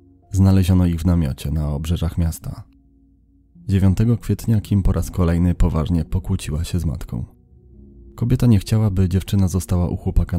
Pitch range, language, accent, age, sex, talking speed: 80-95 Hz, Polish, native, 30-49, male, 150 wpm